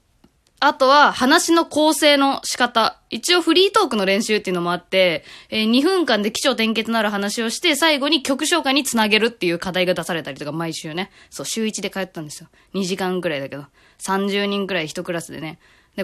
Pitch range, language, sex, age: 190-275 Hz, Japanese, female, 20-39